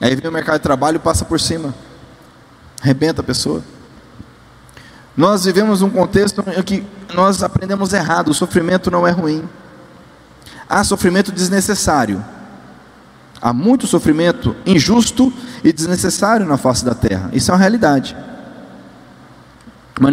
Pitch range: 125-185 Hz